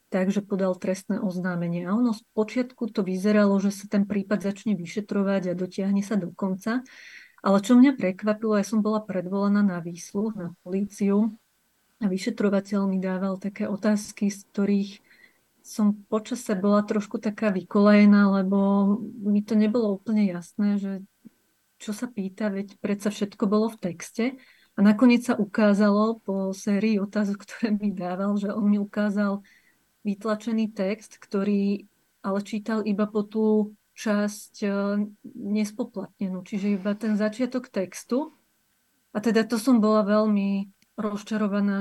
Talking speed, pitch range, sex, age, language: 145 wpm, 195-215 Hz, female, 30-49, Slovak